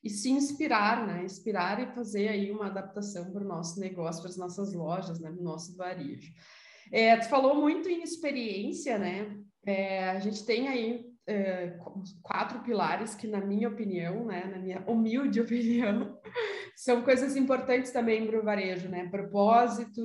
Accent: Brazilian